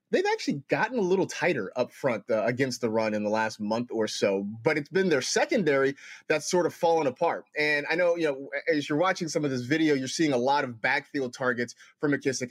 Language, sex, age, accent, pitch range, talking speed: English, male, 30-49, American, 120-160 Hz, 235 wpm